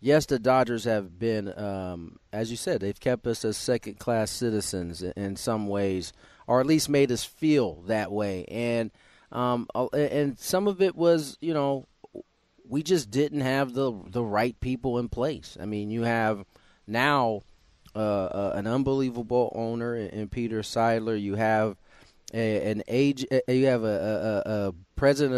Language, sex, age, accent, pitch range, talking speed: English, male, 30-49, American, 105-135 Hz, 165 wpm